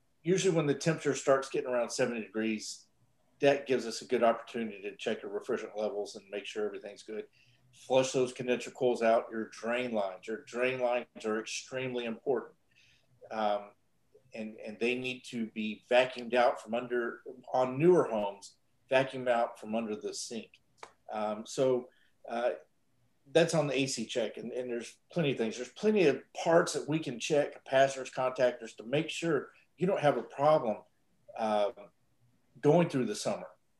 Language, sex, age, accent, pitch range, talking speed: English, male, 40-59, American, 115-145 Hz, 170 wpm